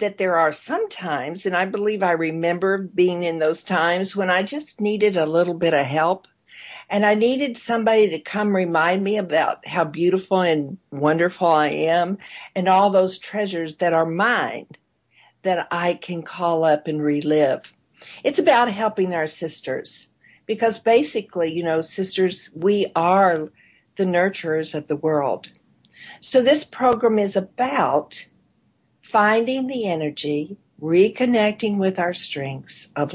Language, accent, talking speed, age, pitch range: English, American, 150 wpm, 50-69, 165-210 Hz